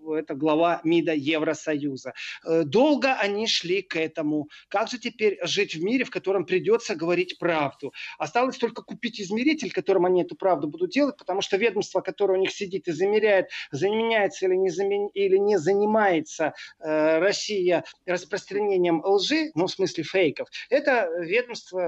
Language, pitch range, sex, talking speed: Russian, 165-230 Hz, male, 145 wpm